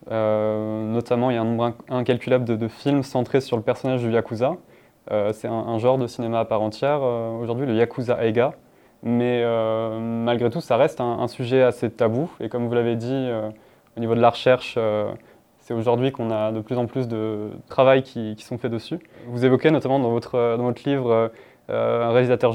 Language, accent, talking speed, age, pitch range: French, French, 215 wpm, 20-39, 115-135 Hz